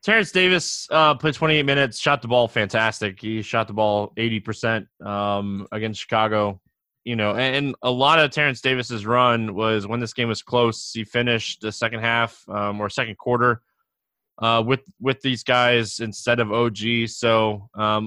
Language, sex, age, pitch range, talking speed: English, male, 20-39, 110-130 Hz, 185 wpm